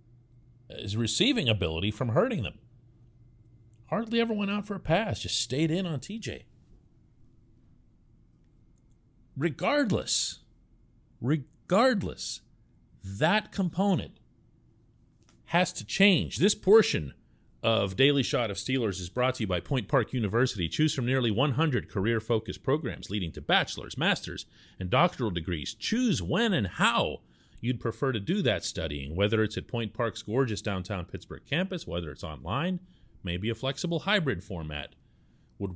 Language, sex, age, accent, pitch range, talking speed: English, male, 40-59, American, 100-140 Hz, 135 wpm